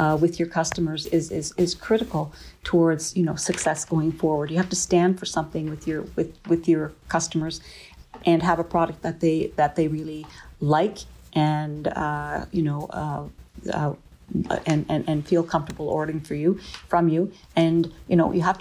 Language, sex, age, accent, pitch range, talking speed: English, female, 50-69, American, 155-170 Hz, 185 wpm